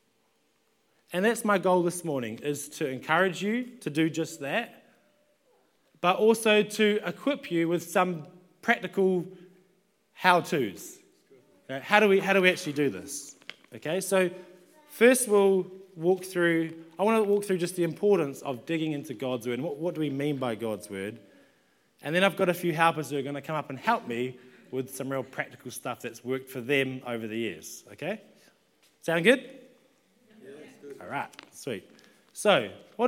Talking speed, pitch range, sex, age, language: 170 wpm, 135-195 Hz, male, 20-39, English